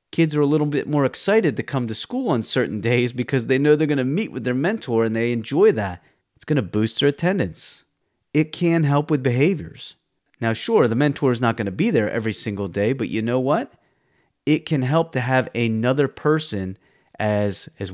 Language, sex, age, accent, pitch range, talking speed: English, male, 40-59, American, 115-155 Hz, 215 wpm